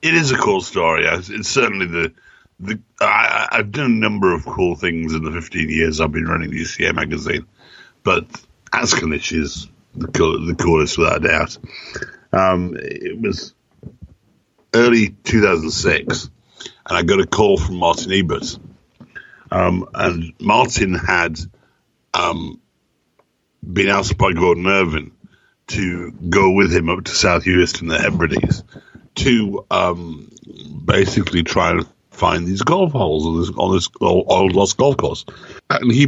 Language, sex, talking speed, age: English, male, 150 wpm, 60-79